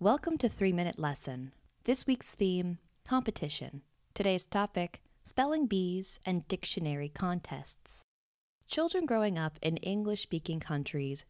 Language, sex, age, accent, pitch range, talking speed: English, female, 20-39, American, 155-220 Hz, 110 wpm